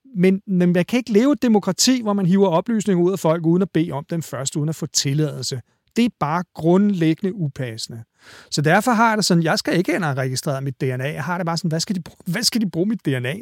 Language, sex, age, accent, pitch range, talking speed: Danish, male, 40-59, native, 155-195 Hz, 245 wpm